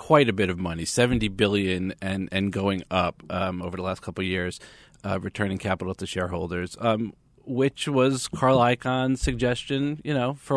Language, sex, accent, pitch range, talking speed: English, male, American, 95-120 Hz, 180 wpm